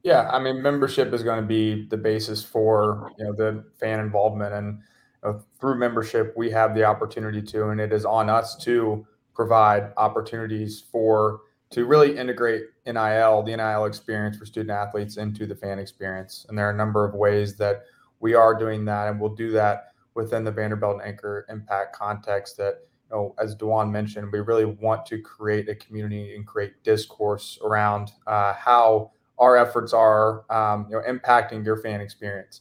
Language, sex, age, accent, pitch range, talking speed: English, male, 20-39, American, 105-115 Hz, 180 wpm